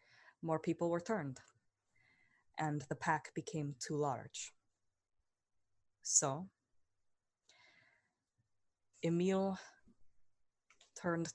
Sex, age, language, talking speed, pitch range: female, 20-39, English, 70 wpm, 100-155 Hz